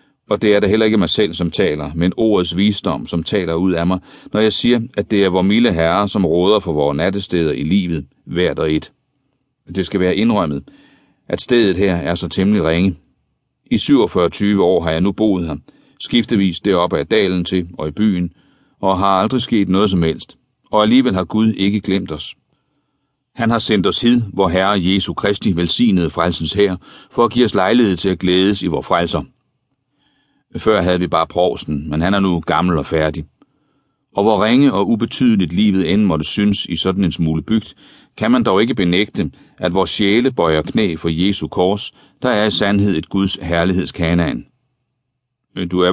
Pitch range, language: 85-110 Hz, Danish